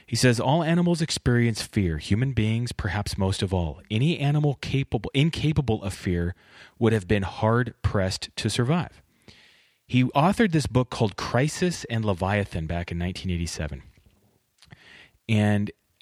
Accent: American